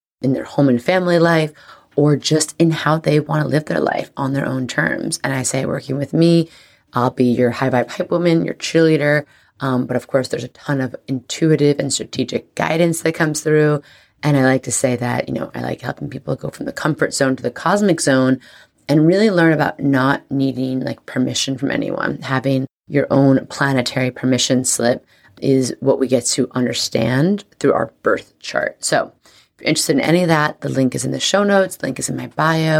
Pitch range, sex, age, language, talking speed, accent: 130-160 Hz, female, 30-49, English, 210 wpm, American